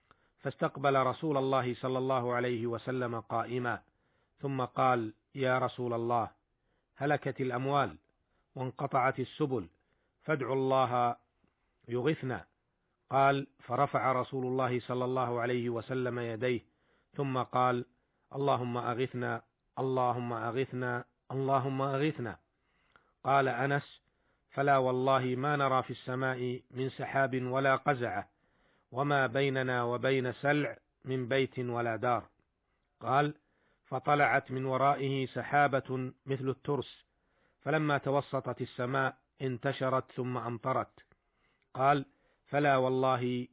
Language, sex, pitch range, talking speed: Arabic, male, 125-135 Hz, 100 wpm